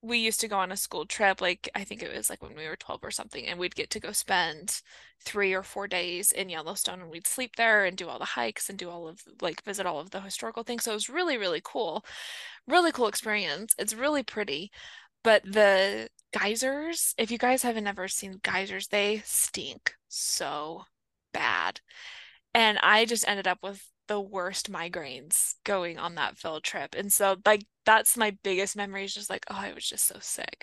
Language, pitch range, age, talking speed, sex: English, 190-225 Hz, 20-39, 210 wpm, female